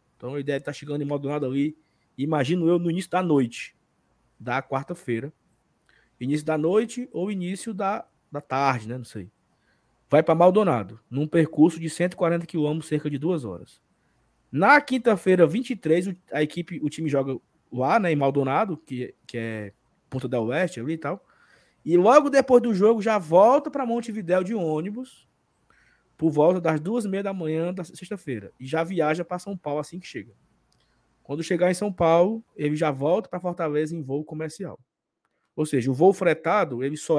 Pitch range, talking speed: 140-185 Hz, 175 wpm